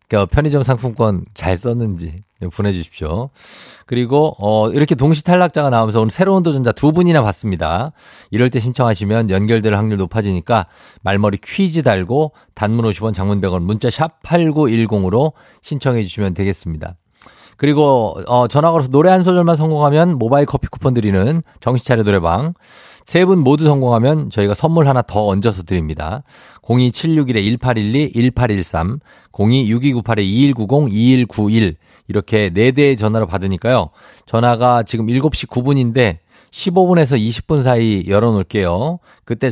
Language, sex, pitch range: Korean, male, 100-140 Hz